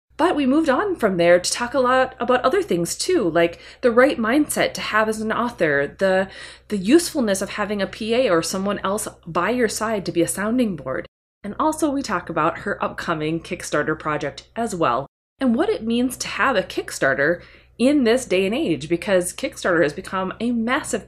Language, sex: English, female